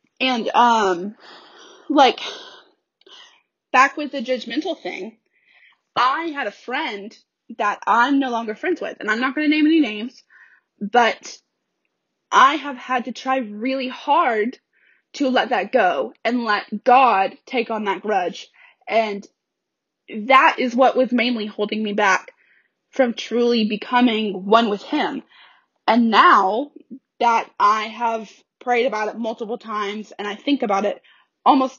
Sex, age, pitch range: female, 10-29, 215-275 Hz